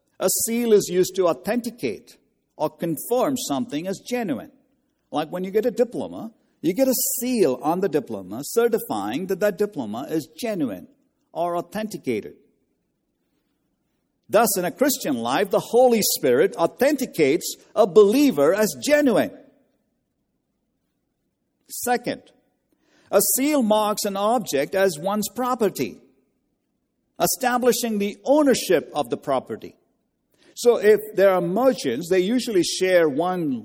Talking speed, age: 125 wpm, 50-69